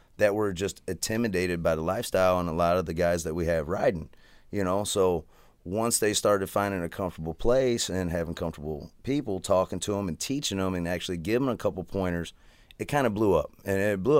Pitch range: 90-105 Hz